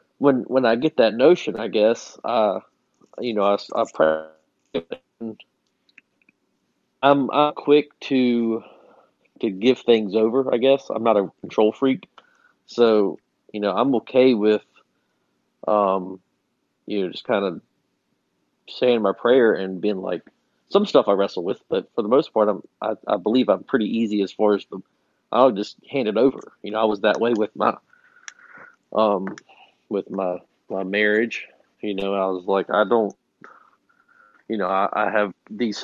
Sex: male